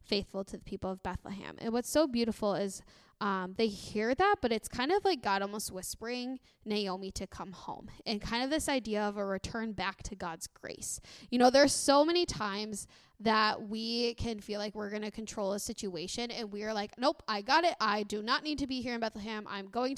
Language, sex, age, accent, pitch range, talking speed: English, female, 10-29, American, 200-245 Hz, 225 wpm